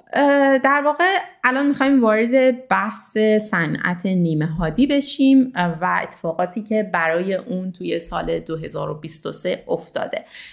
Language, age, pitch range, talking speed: Persian, 30-49, 175-225 Hz, 110 wpm